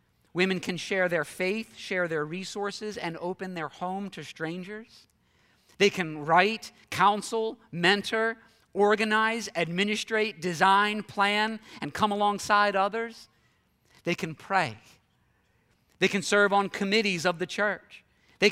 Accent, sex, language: American, male, English